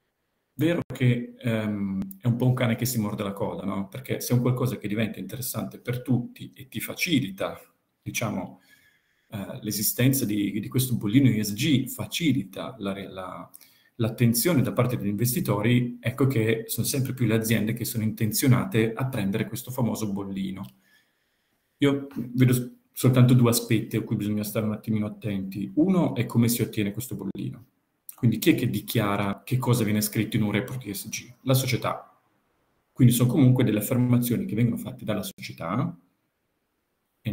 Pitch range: 105-125 Hz